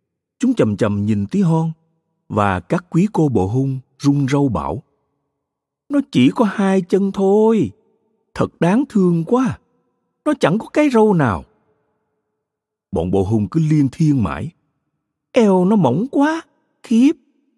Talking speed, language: 145 wpm, Vietnamese